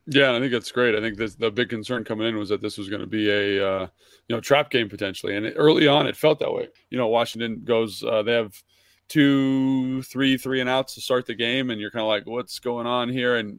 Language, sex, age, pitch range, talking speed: English, male, 20-39, 105-125 Hz, 265 wpm